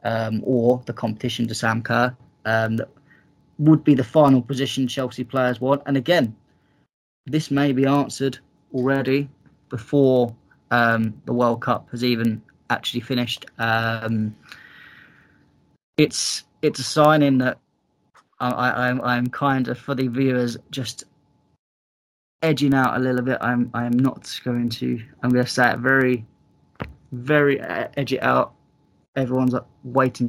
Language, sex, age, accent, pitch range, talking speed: English, male, 20-39, British, 115-130 Hz, 140 wpm